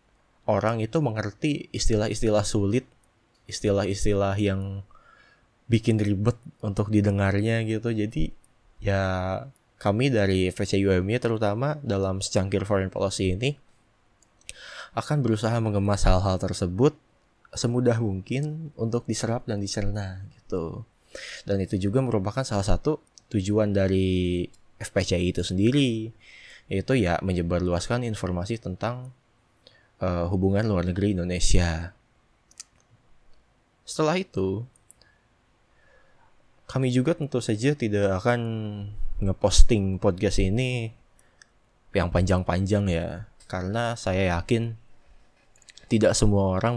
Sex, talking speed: male, 95 wpm